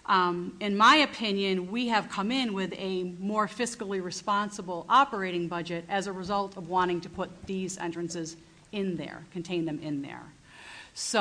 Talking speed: 165 wpm